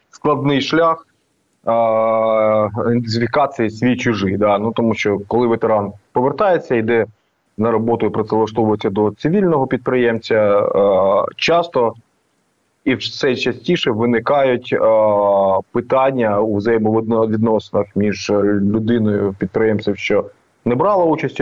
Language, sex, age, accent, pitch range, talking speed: Ukrainian, male, 20-39, native, 105-125 Hz, 105 wpm